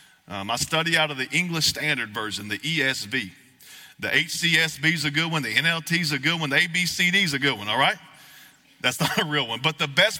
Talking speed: 230 wpm